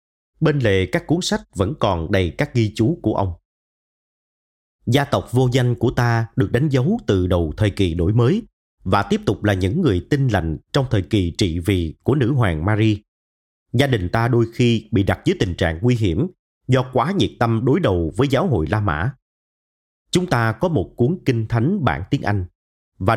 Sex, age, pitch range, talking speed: male, 30-49, 95-135 Hz, 205 wpm